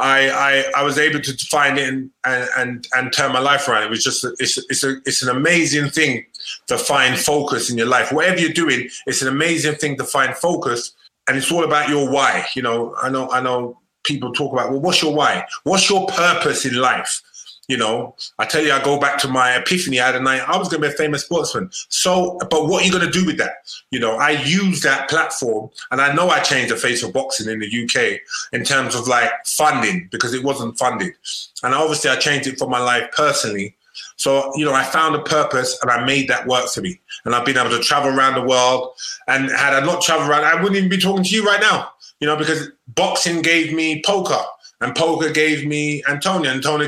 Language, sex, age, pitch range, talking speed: English, male, 20-39, 130-165 Hz, 235 wpm